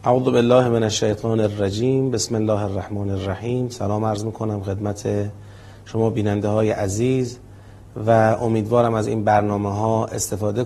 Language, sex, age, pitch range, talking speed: Persian, male, 30-49, 110-130 Hz, 130 wpm